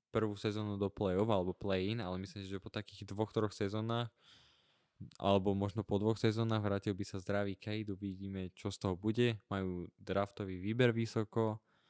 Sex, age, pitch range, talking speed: male, 20-39, 95-110 Hz, 165 wpm